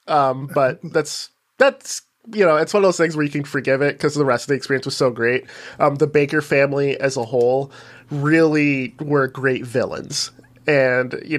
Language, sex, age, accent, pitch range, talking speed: English, male, 20-39, American, 125-150 Hz, 200 wpm